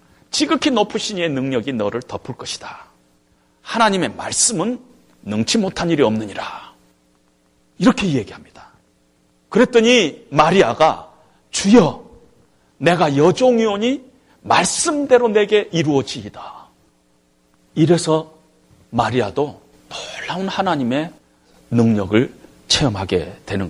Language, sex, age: Korean, male, 40-59